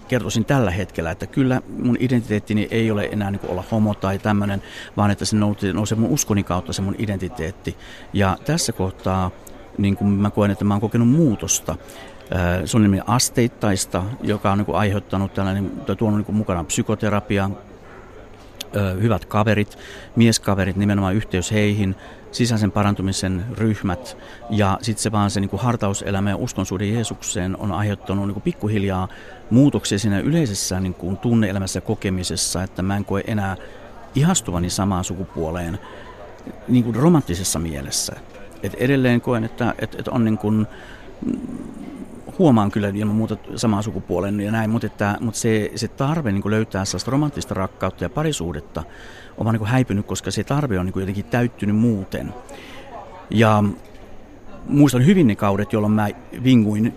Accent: native